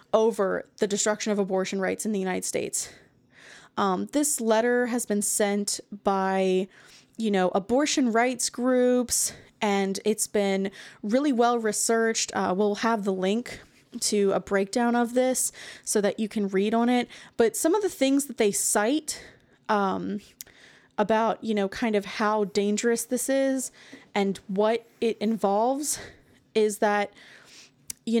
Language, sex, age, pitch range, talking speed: English, female, 20-39, 205-250 Hz, 150 wpm